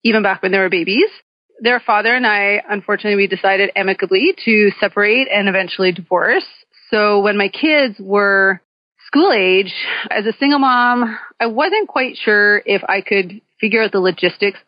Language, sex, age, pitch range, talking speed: English, female, 30-49, 195-235 Hz, 170 wpm